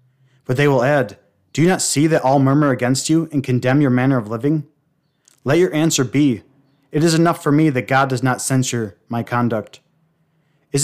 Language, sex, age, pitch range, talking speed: English, male, 30-49, 125-150 Hz, 200 wpm